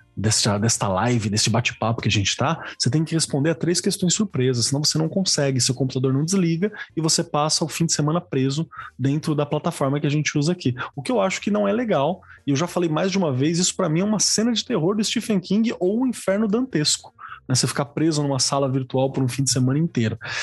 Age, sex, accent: 20-39, male, Brazilian